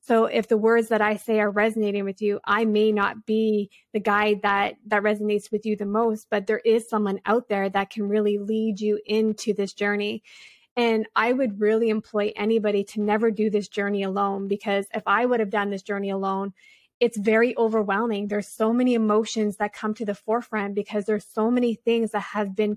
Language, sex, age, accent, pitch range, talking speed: English, female, 20-39, American, 205-225 Hz, 205 wpm